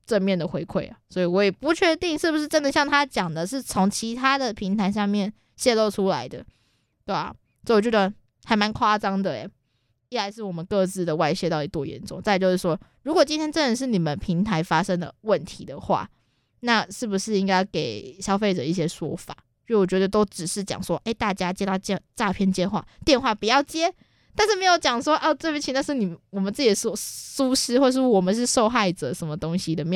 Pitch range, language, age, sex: 180-235 Hz, Chinese, 20-39, female